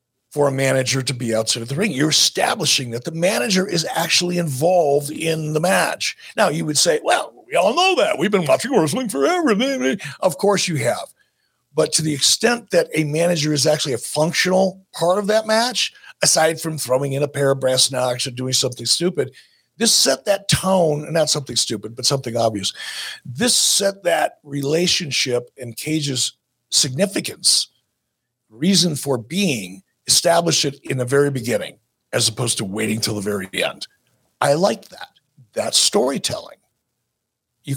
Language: English